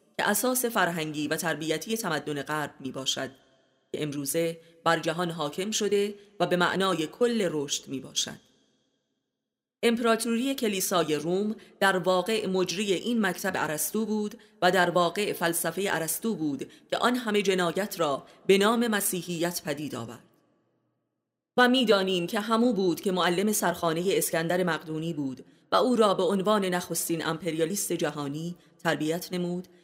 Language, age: Persian, 30-49